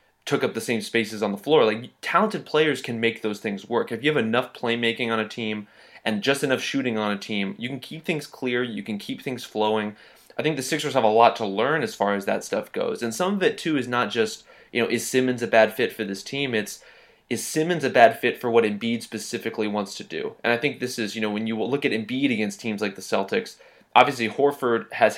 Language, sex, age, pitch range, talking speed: English, male, 20-39, 110-130 Hz, 255 wpm